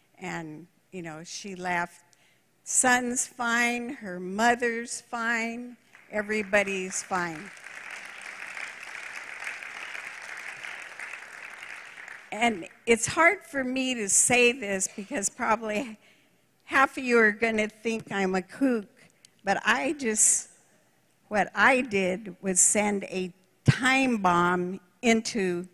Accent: American